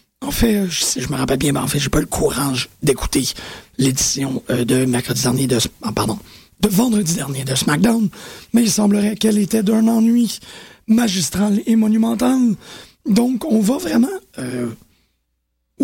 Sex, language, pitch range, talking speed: male, French, 130-220 Hz, 170 wpm